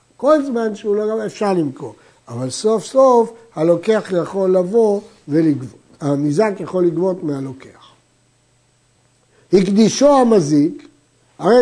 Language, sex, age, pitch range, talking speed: Hebrew, male, 60-79, 155-220 Hz, 110 wpm